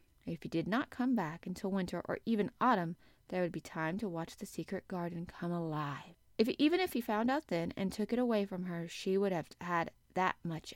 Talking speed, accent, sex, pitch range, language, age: 230 wpm, American, female, 175-225 Hz, English, 20-39